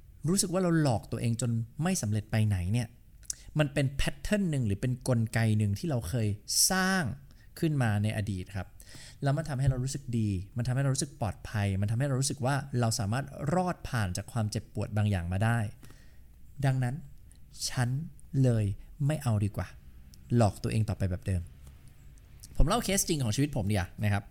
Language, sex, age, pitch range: English, male, 20-39, 105-140 Hz